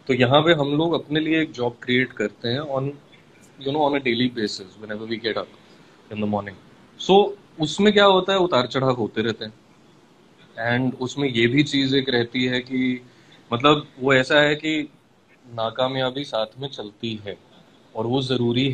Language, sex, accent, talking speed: Hindi, male, native, 175 wpm